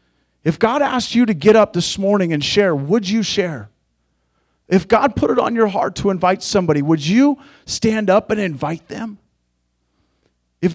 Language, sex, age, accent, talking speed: English, male, 40-59, American, 180 wpm